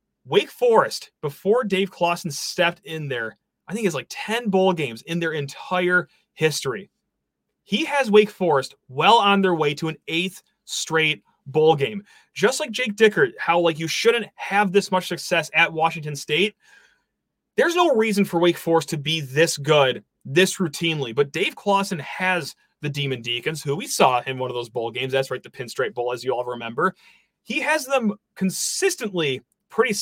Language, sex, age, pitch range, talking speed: English, male, 30-49, 155-215 Hz, 180 wpm